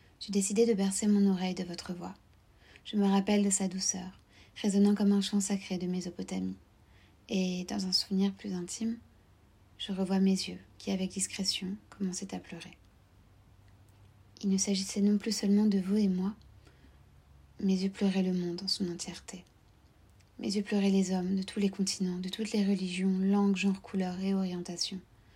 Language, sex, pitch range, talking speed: English, female, 170-200 Hz, 175 wpm